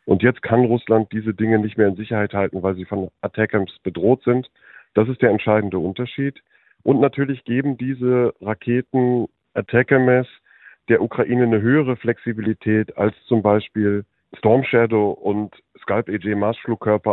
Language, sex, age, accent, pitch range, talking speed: German, male, 40-59, German, 105-125 Hz, 145 wpm